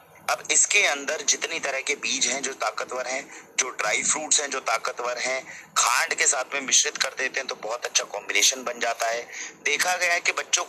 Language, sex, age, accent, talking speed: Hindi, male, 30-49, native, 135 wpm